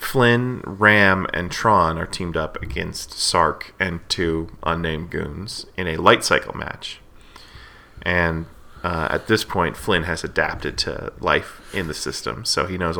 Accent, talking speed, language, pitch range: American, 155 wpm, English, 85-100 Hz